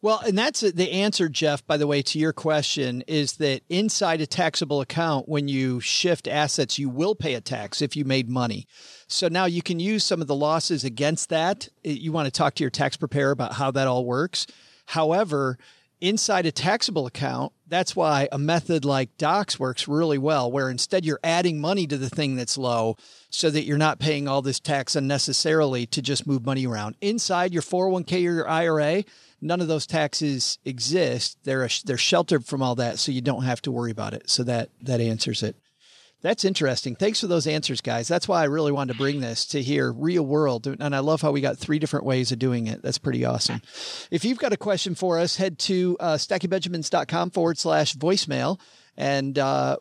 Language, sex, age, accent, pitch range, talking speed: English, male, 40-59, American, 135-170 Hz, 205 wpm